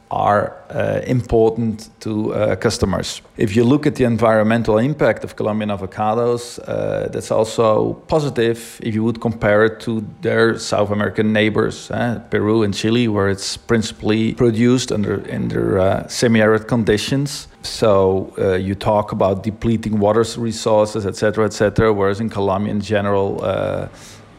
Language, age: Spanish, 40-59